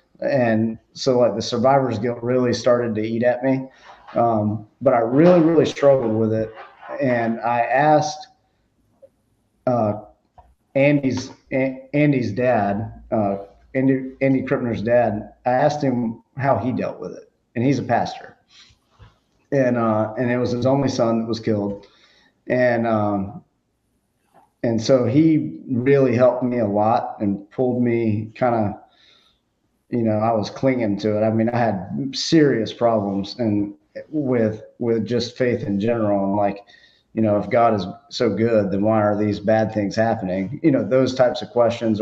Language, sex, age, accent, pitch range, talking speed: English, male, 40-59, American, 110-130 Hz, 160 wpm